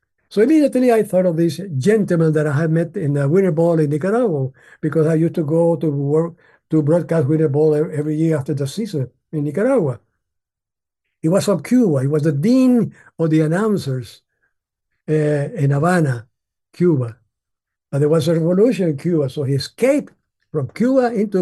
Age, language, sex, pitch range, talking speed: 60-79, English, male, 150-205 Hz, 175 wpm